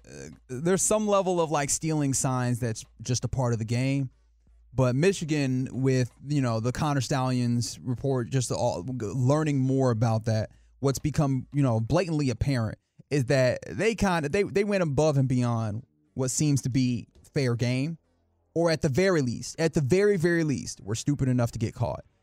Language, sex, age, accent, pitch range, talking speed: English, male, 20-39, American, 115-155 Hz, 185 wpm